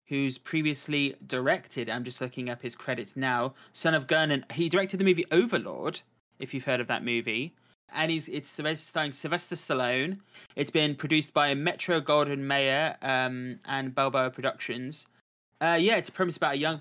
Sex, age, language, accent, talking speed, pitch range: male, 20-39, English, British, 180 wpm, 130-170 Hz